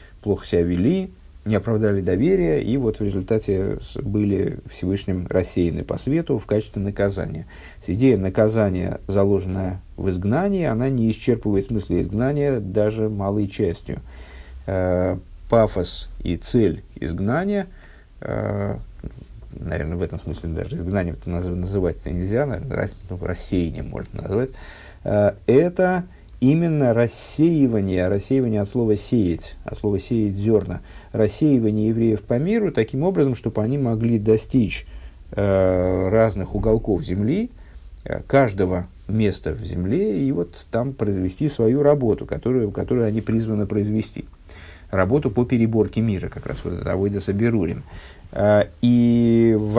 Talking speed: 125 wpm